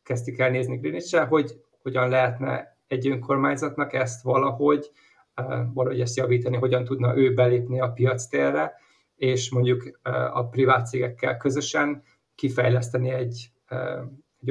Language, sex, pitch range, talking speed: Hungarian, male, 125-135 Hz, 120 wpm